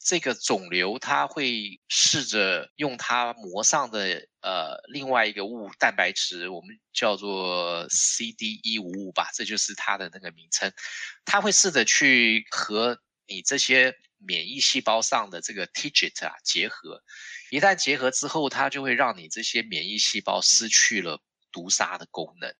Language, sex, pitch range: Chinese, male, 110-165 Hz